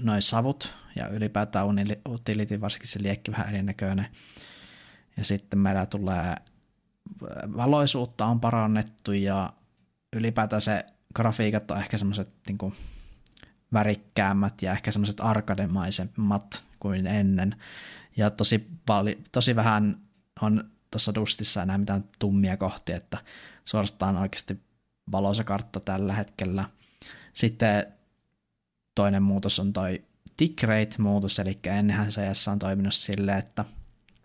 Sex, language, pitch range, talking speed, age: male, Finnish, 100-110 Hz, 110 wpm, 30-49